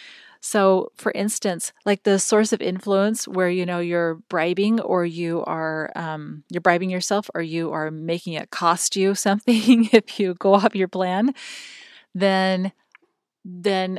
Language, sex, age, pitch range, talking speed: English, female, 30-49, 170-210 Hz, 155 wpm